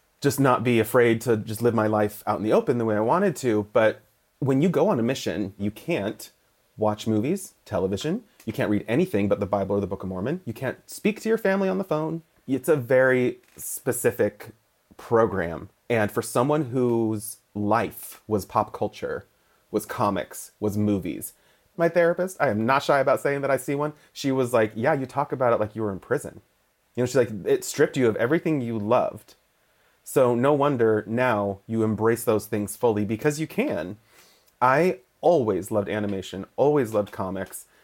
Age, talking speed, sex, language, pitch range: 30-49, 195 wpm, male, English, 105-135 Hz